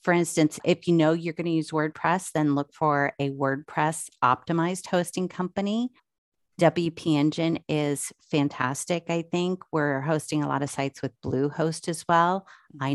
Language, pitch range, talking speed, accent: English, 135-165 Hz, 160 wpm, American